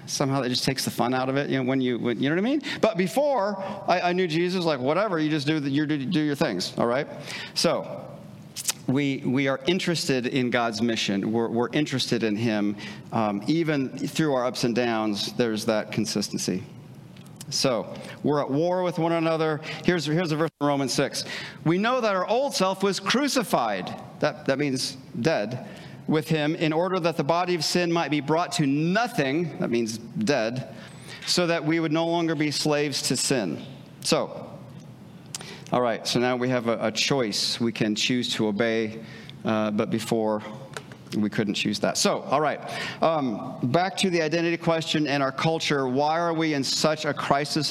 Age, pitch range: 40-59, 125-165 Hz